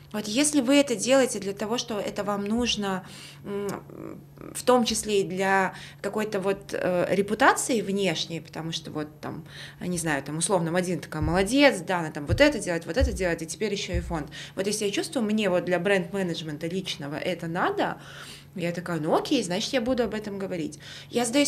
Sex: female